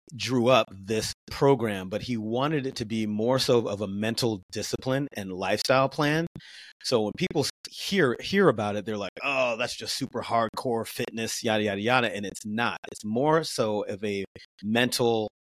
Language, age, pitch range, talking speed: English, 30-49, 105-125 Hz, 180 wpm